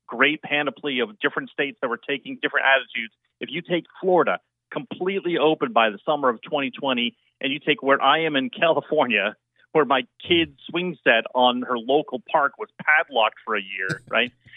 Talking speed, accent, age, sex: 180 wpm, American, 40-59, male